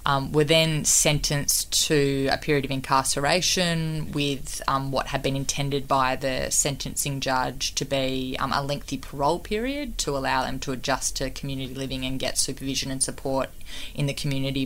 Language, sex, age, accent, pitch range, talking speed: English, female, 20-39, Australian, 130-145 Hz, 170 wpm